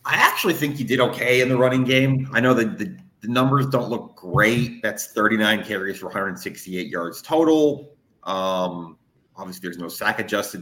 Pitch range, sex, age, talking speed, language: 95-125 Hz, male, 30-49, 180 wpm, English